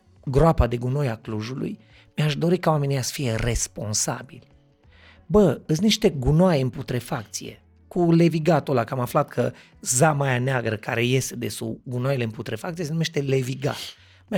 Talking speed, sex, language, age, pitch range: 160 wpm, male, Romanian, 30-49, 120-155 Hz